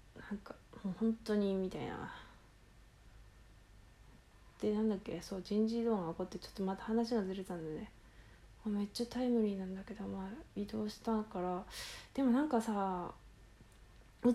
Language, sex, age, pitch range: Japanese, female, 20-39, 185-255 Hz